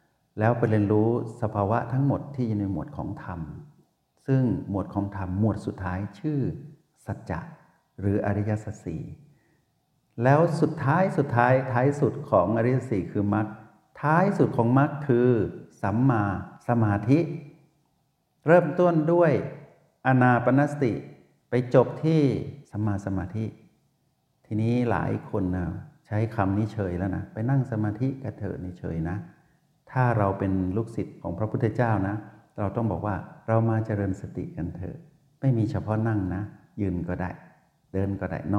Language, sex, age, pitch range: Thai, male, 60-79, 100-140 Hz